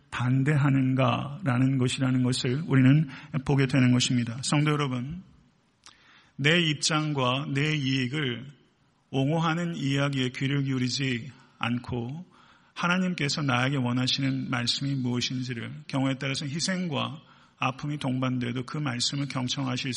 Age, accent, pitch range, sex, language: 40-59, native, 130-155 Hz, male, Korean